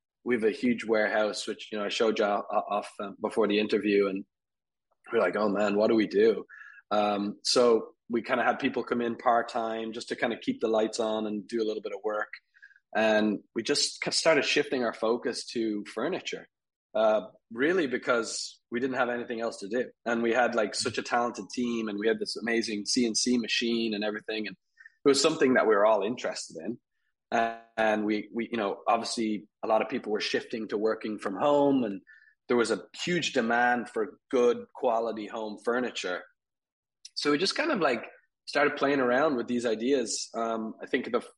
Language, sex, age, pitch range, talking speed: English, male, 20-39, 105-120 Hz, 200 wpm